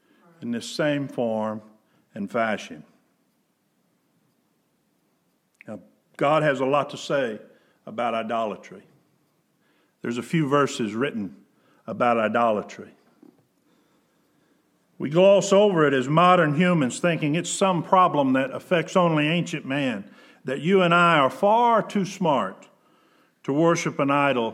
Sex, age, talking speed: male, 50-69, 120 wpm